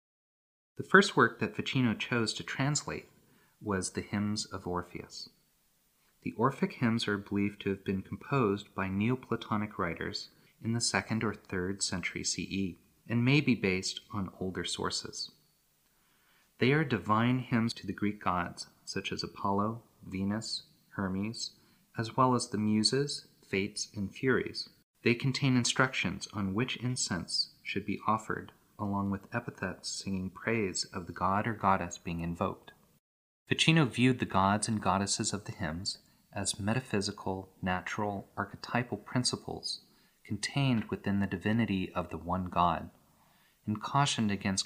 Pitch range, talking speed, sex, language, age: 95-115 Hz, 140 wpm, male, English, 30-49